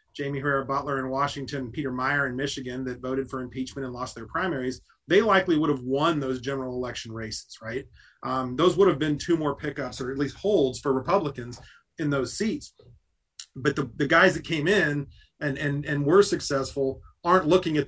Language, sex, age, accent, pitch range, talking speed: English, male, 30-49, American, 130-150 Hz, 195 wpm